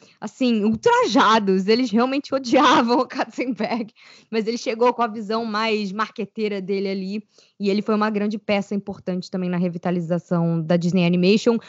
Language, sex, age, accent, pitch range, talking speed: Portuguese, female, 20-39, Brazilian, 200-240 Hz, 155 wpm